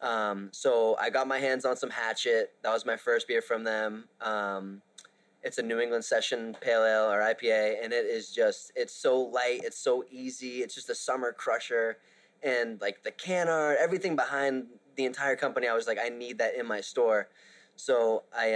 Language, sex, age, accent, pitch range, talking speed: English, male, 20-39, American, 115-145 Hz, 195 wpm